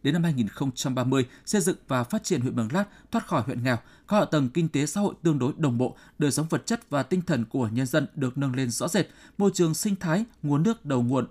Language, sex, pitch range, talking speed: Vietnamese, male, 130-185 Hz, 260 wpm